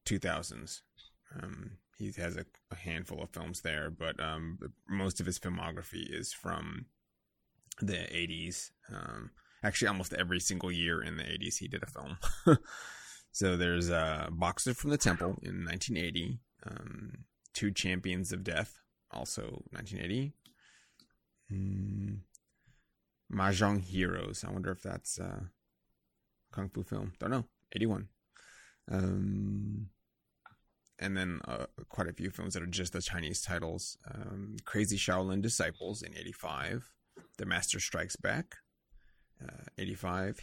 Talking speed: 135 wpm